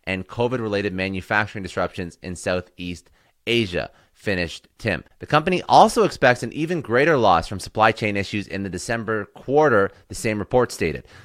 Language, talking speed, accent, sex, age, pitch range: English, 155 wpm, American, male, 30-49, 100-125 Hz